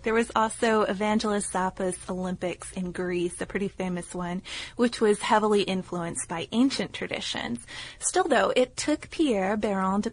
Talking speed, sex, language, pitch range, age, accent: 155 wpm, female, English, 180-215 Hz, 20-39, American